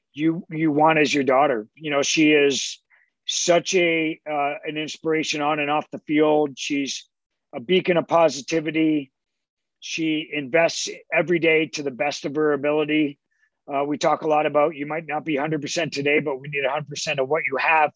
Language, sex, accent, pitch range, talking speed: English, male, American, 145-165 Hz, 190 wpm